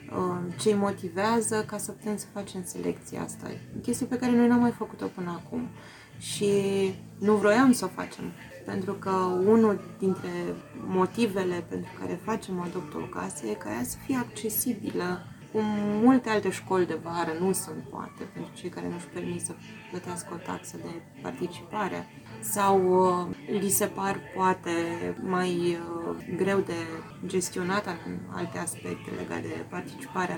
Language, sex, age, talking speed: Romanian, female, 20-39, 150 wpm